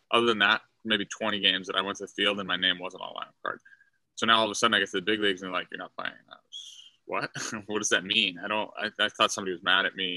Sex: male